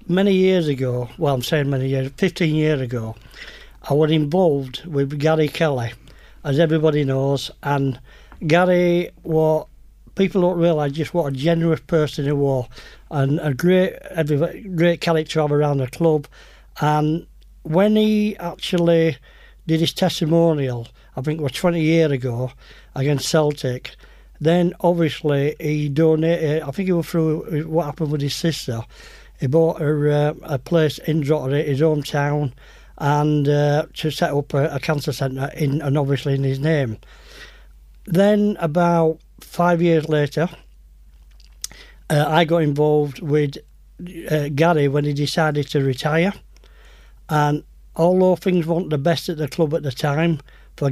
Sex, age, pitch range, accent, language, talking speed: male, 60-79, 140-165 Hz, British, English, 150 wpm